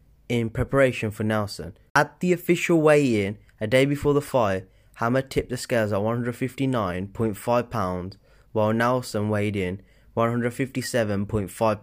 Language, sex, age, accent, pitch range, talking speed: English, male, 20-39, British, 105-125 Hz, 125 wpm